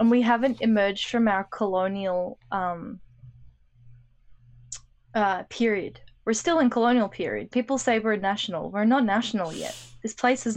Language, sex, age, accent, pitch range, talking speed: English, female, 20-39, Australian, 185-225 Hz, 150 wpm